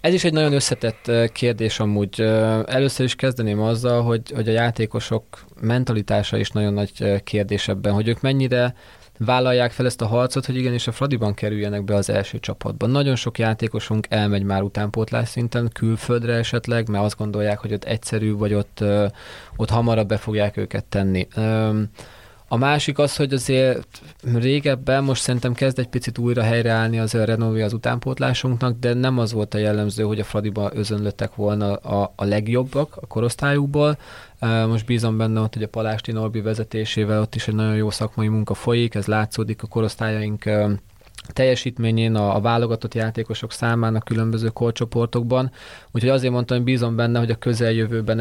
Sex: male